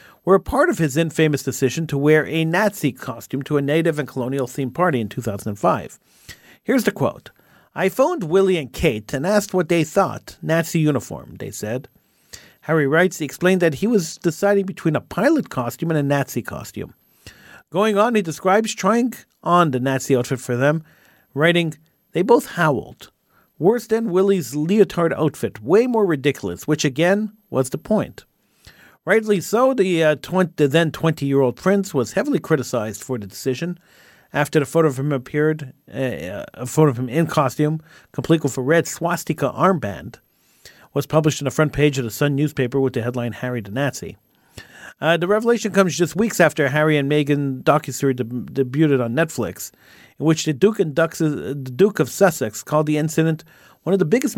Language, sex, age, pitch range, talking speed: English, male, 50-69, 135-180 Hz, 175 wpm